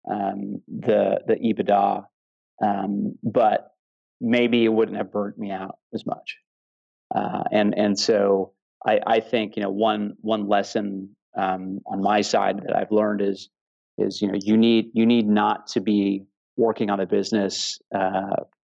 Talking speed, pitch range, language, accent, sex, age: 160 wpm, 95-110 Hz, English, American, male, 30-49